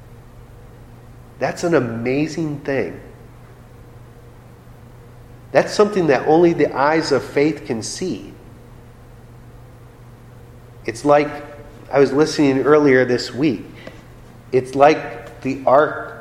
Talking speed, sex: 95 wpm, male